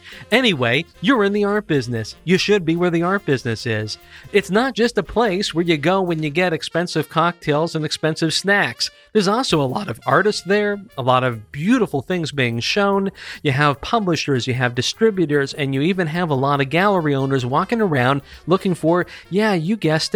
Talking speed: 195 wpm